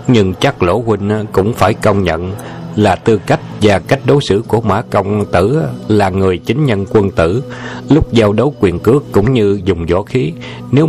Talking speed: 200 wpm